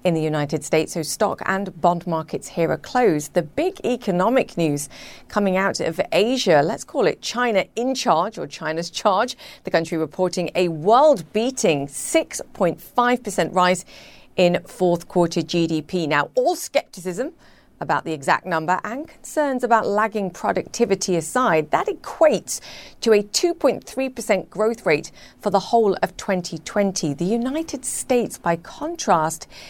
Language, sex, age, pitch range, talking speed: English, female, 40-59, 165-225 Hz, 145 wpm